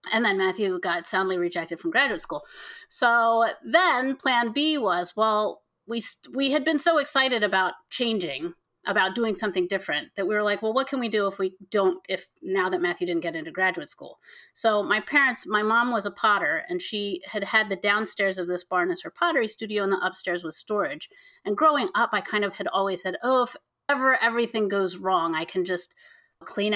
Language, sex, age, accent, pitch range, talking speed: English, female, 30-49, American, 185-270 Hz, 210 wpm